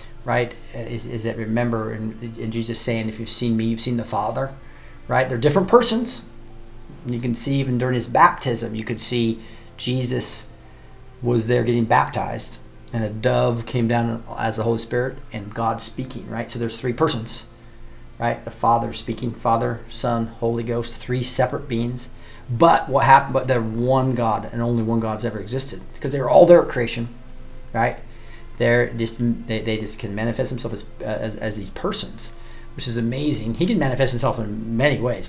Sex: male